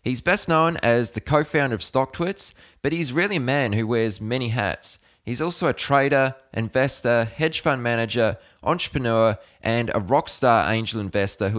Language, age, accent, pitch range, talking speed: English, 20-39, Australian, 110-140 Hz, 170 wpm